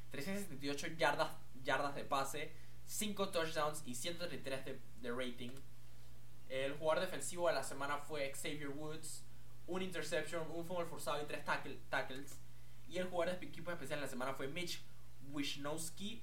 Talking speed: 155 wpm